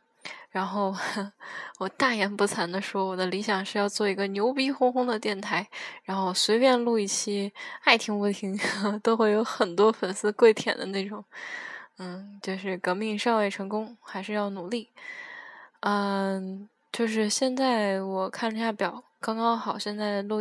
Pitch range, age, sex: 195-225 Hz, 10-29, female